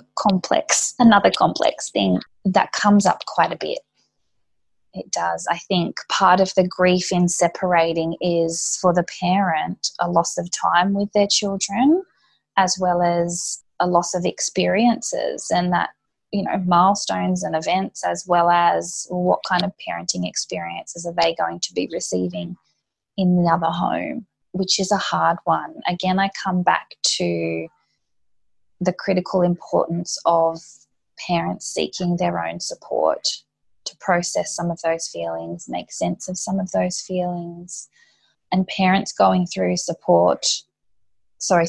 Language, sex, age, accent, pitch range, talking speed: English, female, 20-39, Australian, 165-185 Hz, 145 wpm